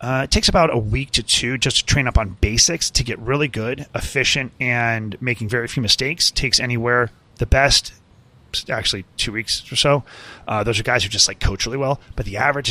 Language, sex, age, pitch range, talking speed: English, male, 30-49, 105-130 Hz, 215 wpm